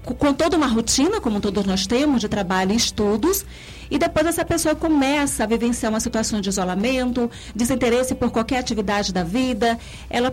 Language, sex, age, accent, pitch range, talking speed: Portuguese, female, 40-59, Brazilian, 215-275 Hz, 175 wpm